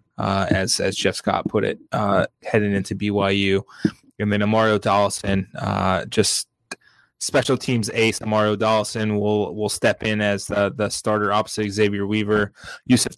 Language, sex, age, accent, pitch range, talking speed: English, male, 20-39, American, 100-115 Hz, 165 wpm